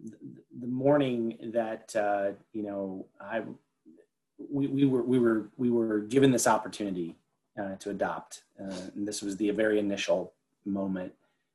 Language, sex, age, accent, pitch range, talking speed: English, male, 30-49, American, 100-120 Hz, 145 wpm